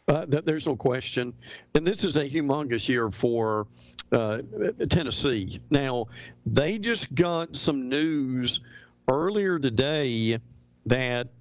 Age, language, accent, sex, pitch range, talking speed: 50-69, English, American, male, 120-160 Hz, 115 wpm